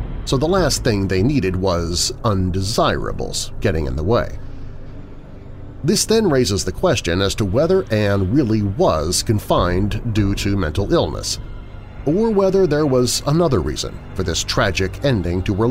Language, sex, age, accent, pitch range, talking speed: English, male, 40-59, American, 95-125 Hz, 155 wpm